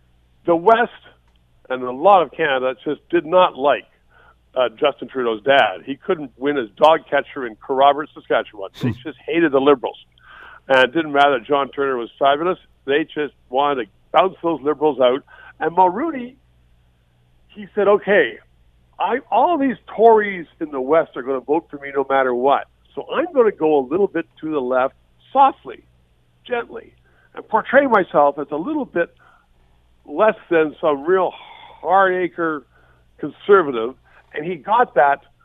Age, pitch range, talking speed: 50-69, 130-180 Hz, 165 wpm